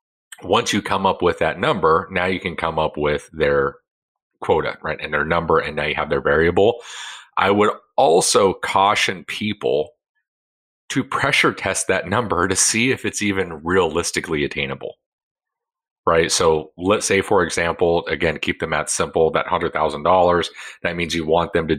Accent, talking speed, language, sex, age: American, 175 wpm, English, male, 40-59